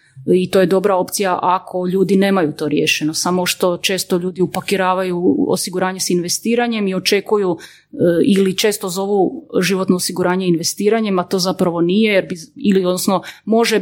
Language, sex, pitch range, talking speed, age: Croatian, female, 175-205 Hz, 150 wpm, 30-49